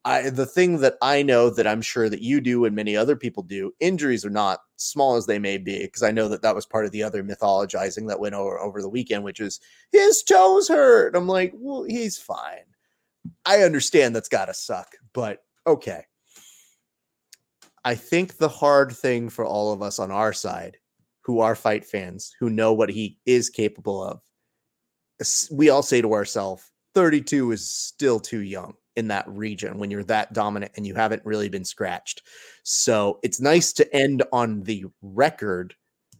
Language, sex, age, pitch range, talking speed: English, male, 30-49, 105-145 Hz, 185 wpm